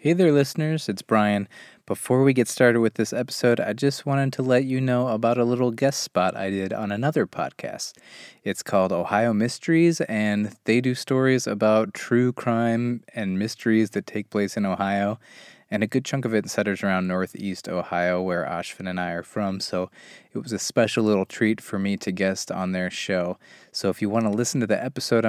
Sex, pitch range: male, 95-115 Hz